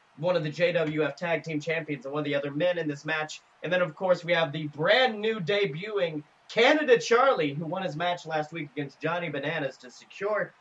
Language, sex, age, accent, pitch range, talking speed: English, male, 30-49, American, 150-185 Hz, 220 wpm